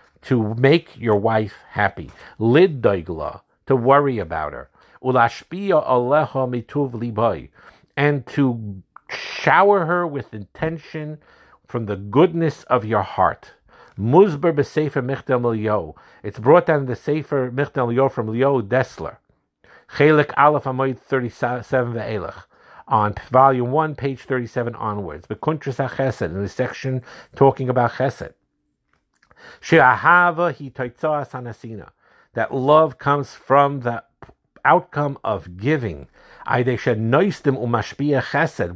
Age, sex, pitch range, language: 50-69, male, 115-150 Hz, English